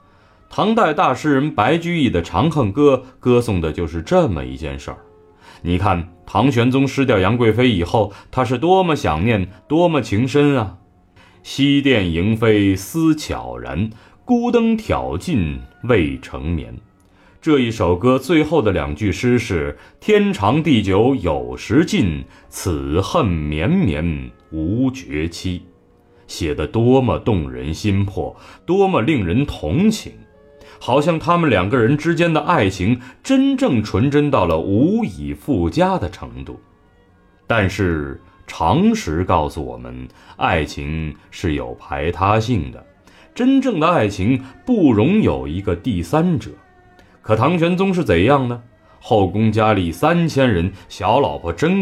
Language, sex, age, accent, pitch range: Chinese, male, 30-49, native, 90-145 Hz